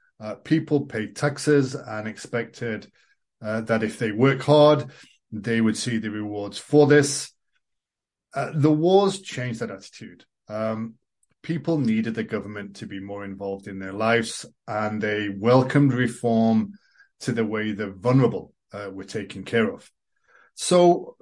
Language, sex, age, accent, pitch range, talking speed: English, male, 40-59, British, 110-145 Hz, 145 wpm